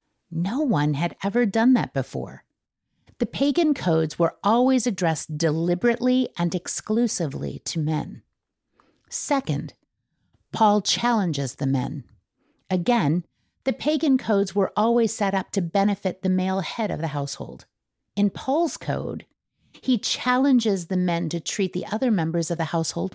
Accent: American